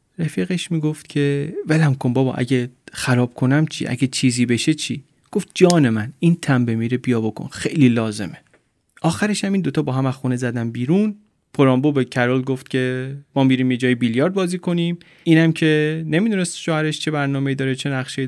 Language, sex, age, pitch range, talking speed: Persian, male, 30-49, 125-165 Hz, 175 wpm